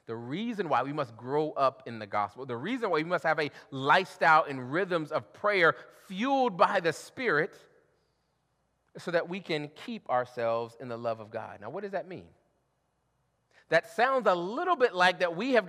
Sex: male